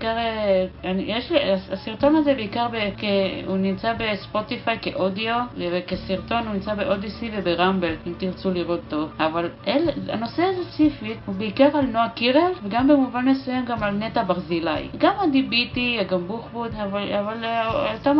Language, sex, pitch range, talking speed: Hebrew, female, 205-300 Hz, 140 wpm